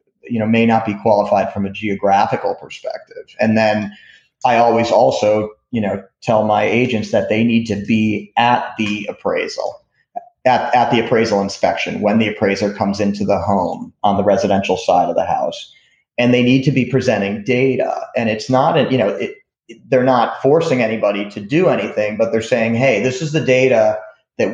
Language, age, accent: English, 30-49, American